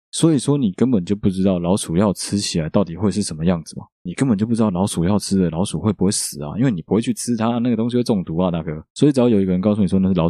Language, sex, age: Chinese, male, 20-39